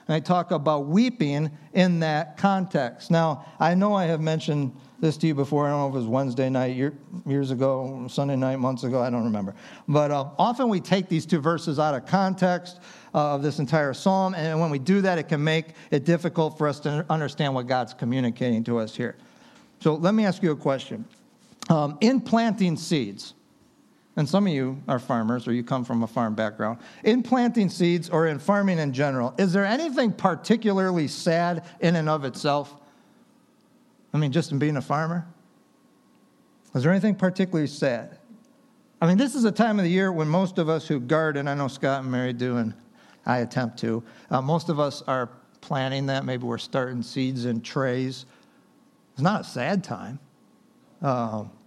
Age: 50-69